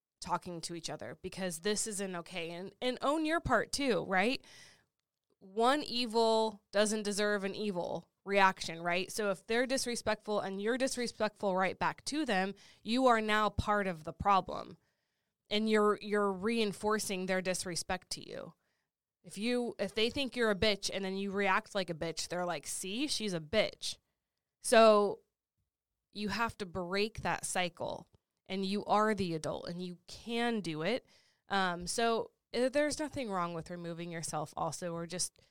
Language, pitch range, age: English, 180-220 Hz, 20-39